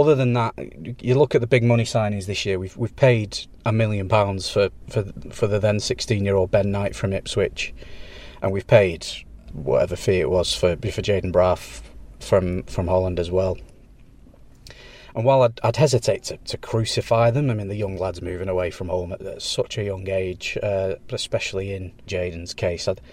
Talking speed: 185 wpm